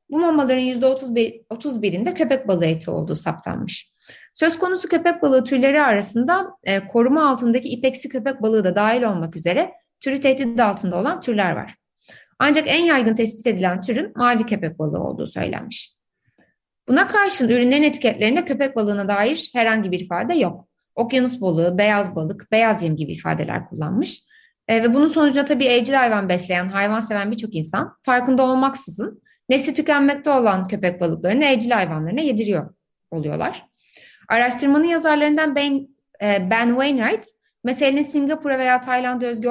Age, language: 30-49, Turkish